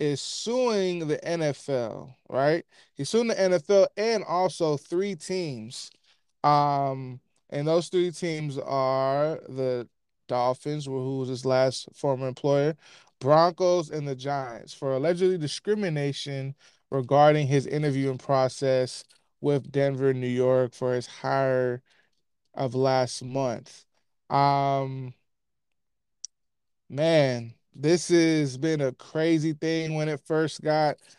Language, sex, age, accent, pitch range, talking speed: English, male, 20-39, American, 135-155 Hz, 115 wpm